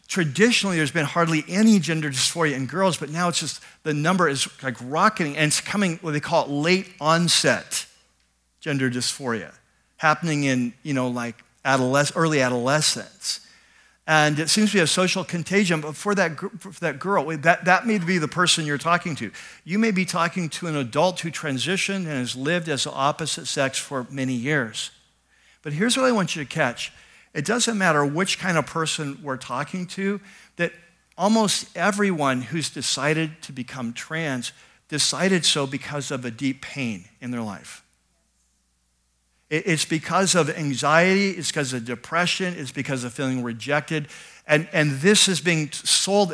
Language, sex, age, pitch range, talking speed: English, male, 50-69, 140-185 Hz, 175 wpm